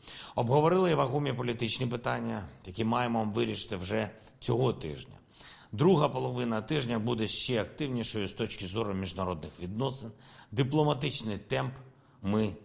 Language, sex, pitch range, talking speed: Ukrainian, male, 105-130 Hz, 115 wpm